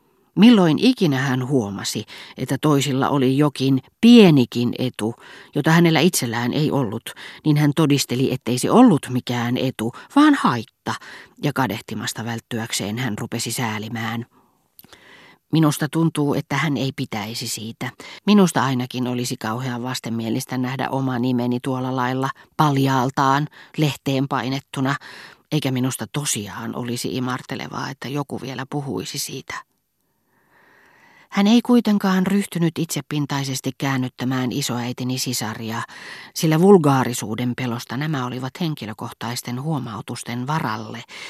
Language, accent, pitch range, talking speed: Finnish, native, 120-150 Hz, 110 wpm